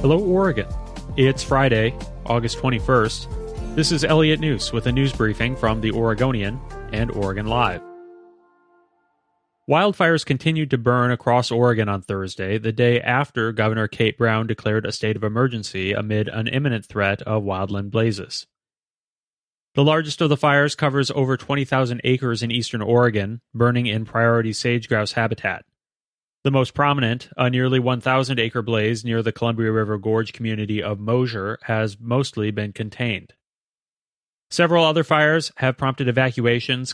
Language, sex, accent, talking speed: English, male, American, 145 wpm